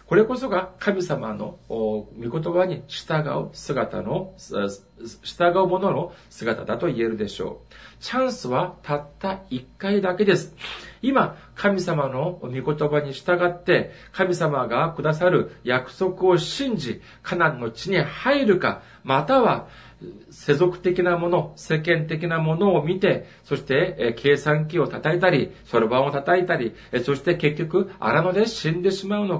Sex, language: male, Japanese